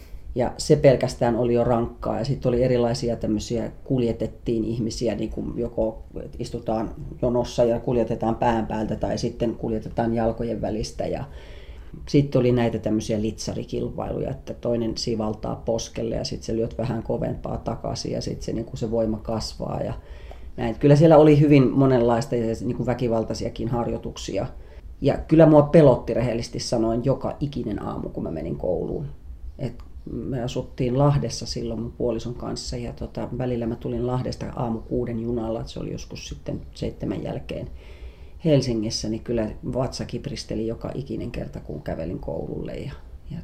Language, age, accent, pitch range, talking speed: Finnish, 30-49, native, 110-125 Hz, 150 wpm